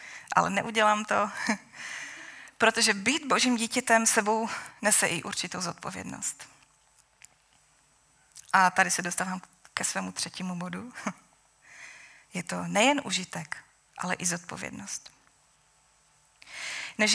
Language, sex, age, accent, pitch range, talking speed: Czech, female, 20-39, native, 185-230 Hz, 100 wpm